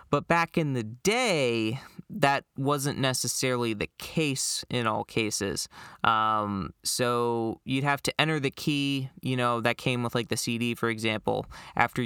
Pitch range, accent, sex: 115-140 Hz, American, male